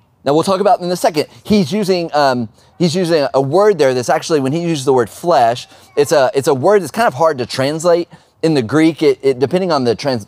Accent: American